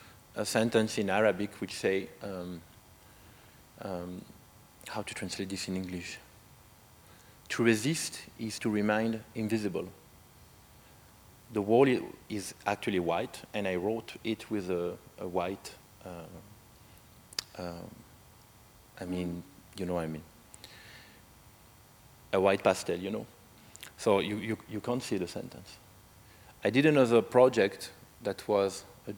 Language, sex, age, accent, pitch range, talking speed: German, male, 40-59, French, 95-110 Hz, 130 wpm